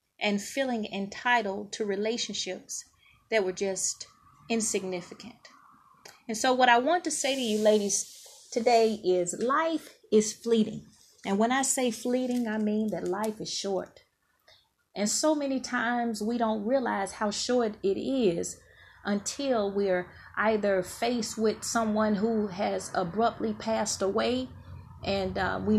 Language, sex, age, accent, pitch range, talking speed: English, female, 30-49, American, 205-250 Hz, 140 wpm